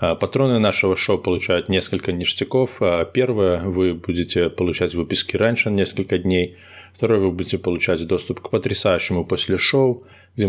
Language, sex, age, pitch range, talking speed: Russian, male, 20-39, 90-105 Hz, 145 wpm